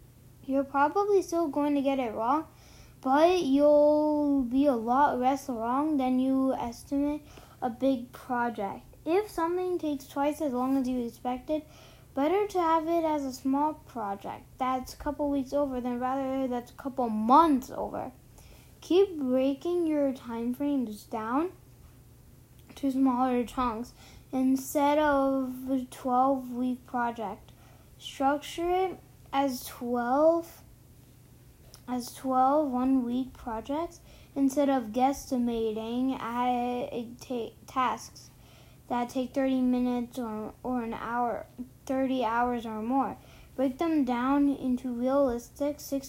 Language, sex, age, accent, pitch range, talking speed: English, female, 10-29, American, 245-290 Hz, 130 wpm